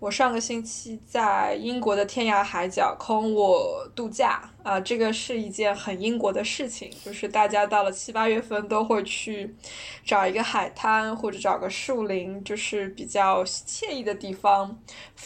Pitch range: 205-245 Hz